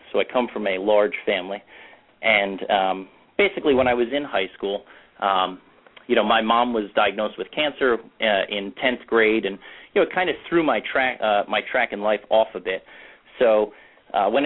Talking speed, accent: 205 wpm, American